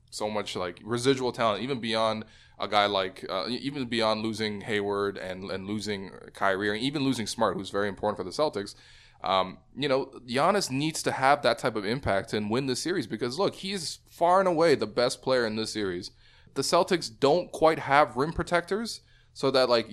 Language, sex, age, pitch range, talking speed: English, male, 20-39, 100-130 Hz, 200 wpm